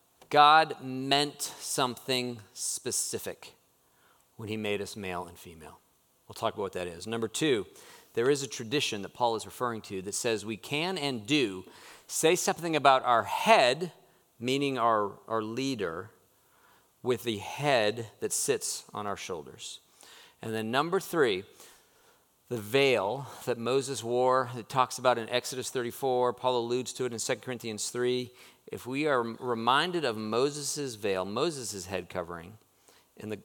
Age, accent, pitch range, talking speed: 40-59, American, 110-145 Hz, 155 wpm